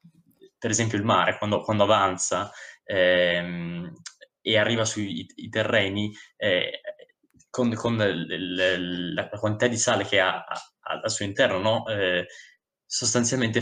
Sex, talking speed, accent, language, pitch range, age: male, 140 wpm, native, Italian, 100-120 Hz, 20-39